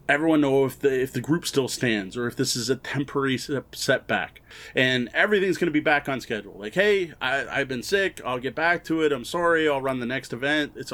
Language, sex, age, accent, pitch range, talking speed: English, male, 30-49, American, 130-170 Hz, 235 wpm